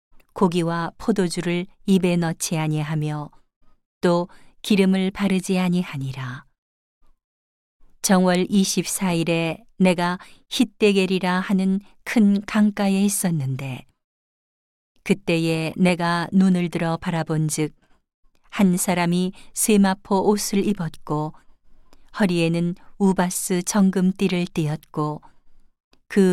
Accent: native